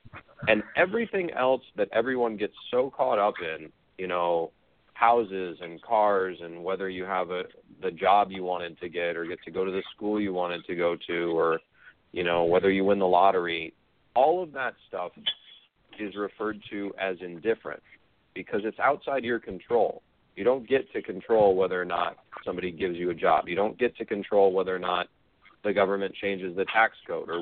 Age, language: 40-59, English